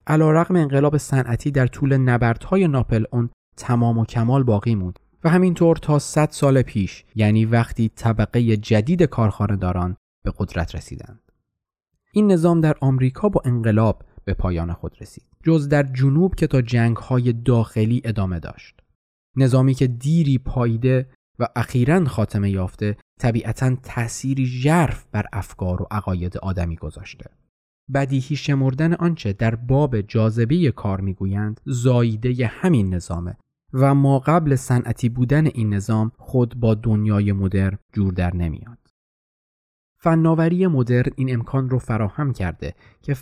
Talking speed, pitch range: 135 wpm, 100-135 Hz